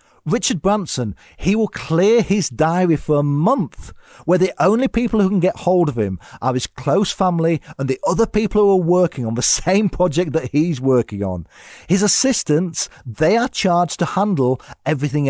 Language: English